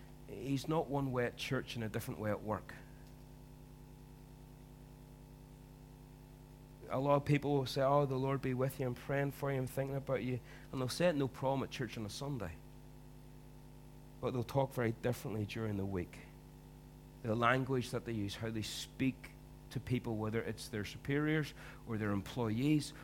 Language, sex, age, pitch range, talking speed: English, male, 40-59, 120-140 Hz, 175 wpm